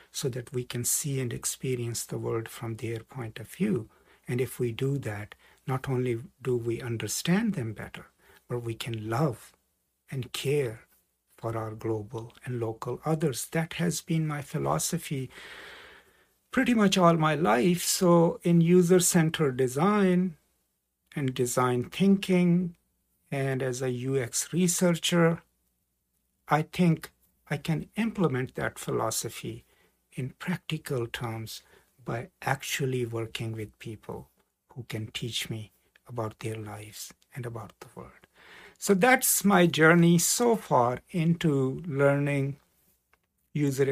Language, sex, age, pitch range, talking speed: English, male, 60-79, 115-160 Hz, 130 wpm